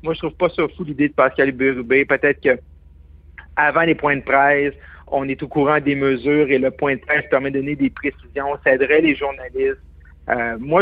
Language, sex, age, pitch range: French, male, 50-69, 140-170 Hz